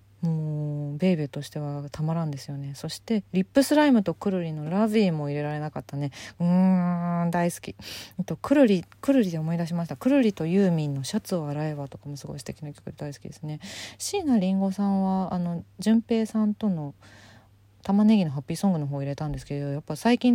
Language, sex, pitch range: Japanese, female, 145-205 Hz